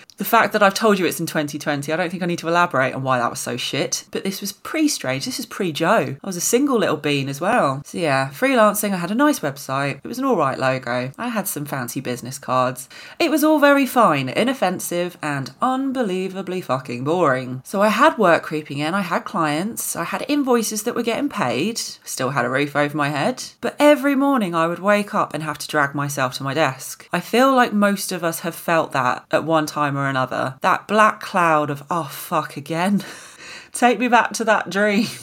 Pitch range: 145-220 Hz